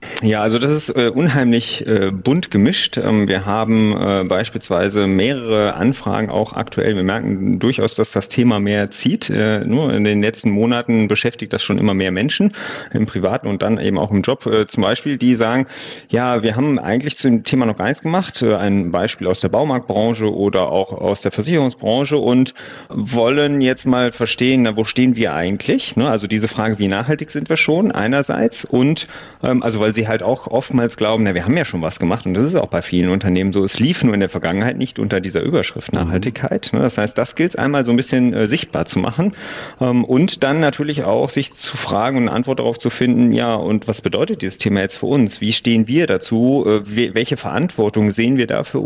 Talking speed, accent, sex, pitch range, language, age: 210 wpm, German, male, 105-130 Hz, German, 30-49